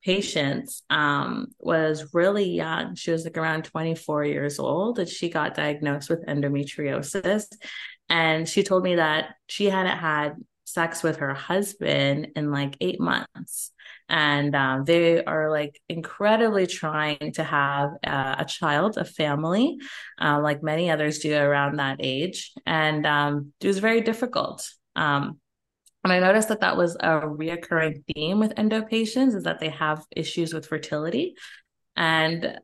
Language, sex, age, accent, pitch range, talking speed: English, female, 20-39, American, 150-190 Hz, 155 wpm